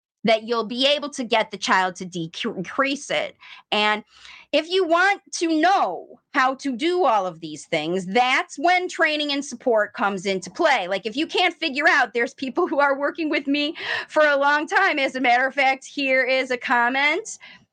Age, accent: 30-49, American